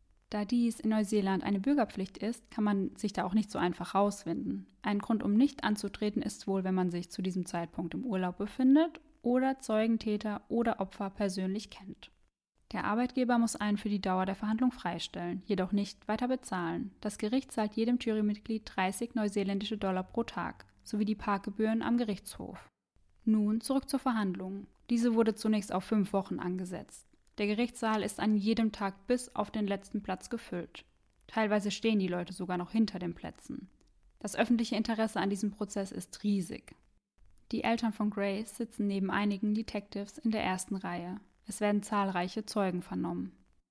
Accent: German